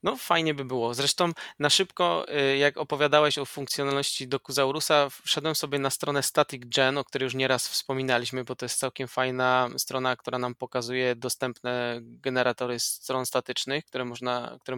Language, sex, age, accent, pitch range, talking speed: Polish, male, 20-39, native, 125-150 Hz, 160 wpm